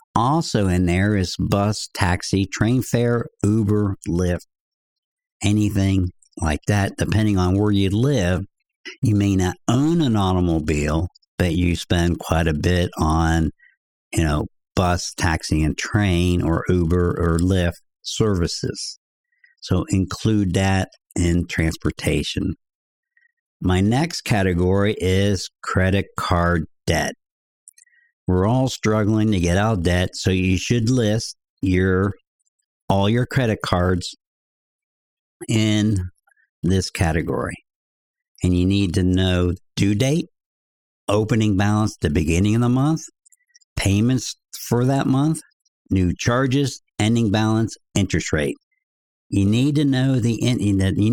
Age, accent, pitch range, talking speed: 60-79, American, 90-120 Hz, 125 wpm